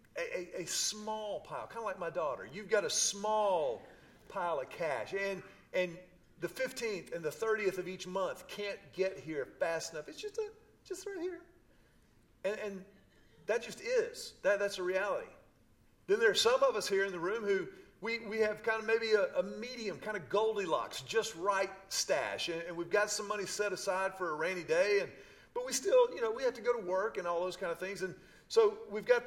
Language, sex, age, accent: English, male, 40-59, American